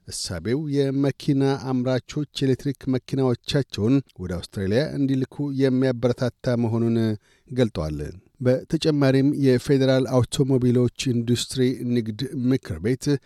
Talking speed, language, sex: 80 wpm, Amharic, male